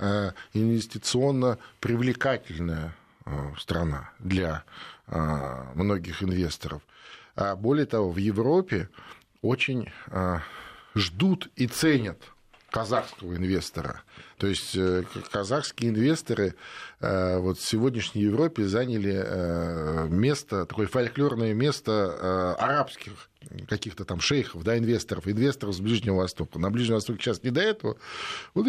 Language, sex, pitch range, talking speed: Russian, male, 95-125 Hz, 100 wpm